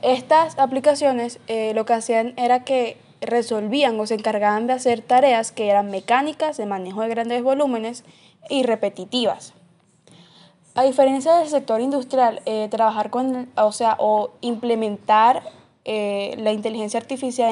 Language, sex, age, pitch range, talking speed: Spanish, female, 10-29, 215-255 Hz, 135 wpm